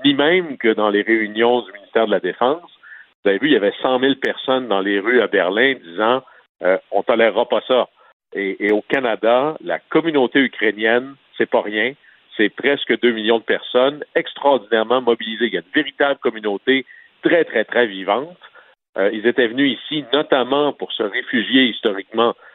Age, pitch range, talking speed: 50-69, 110-150 Hz, 190 wpm